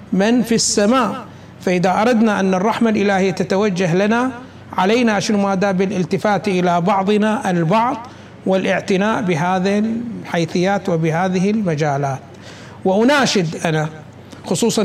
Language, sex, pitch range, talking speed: Arabic, male, 170-220 Hz, 100 wpm